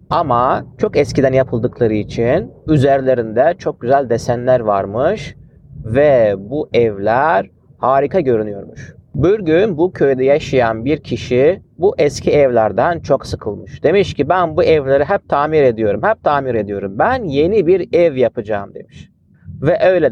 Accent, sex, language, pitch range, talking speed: native, male, Turkish, 130-175 Hz, 135 wpm